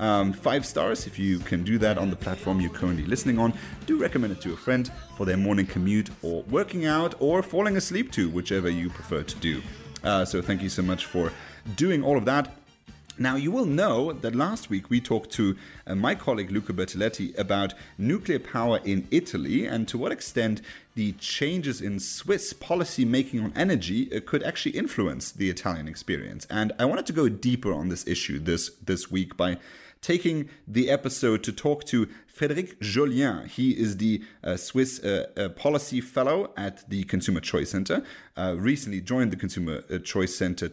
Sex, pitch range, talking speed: male, 95-130 Hz, 190 wpm